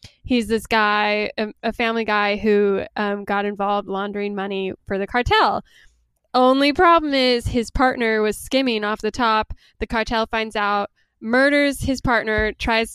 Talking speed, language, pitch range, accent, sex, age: 155 wpm, English, 200-240 Hz, American, female, 10-29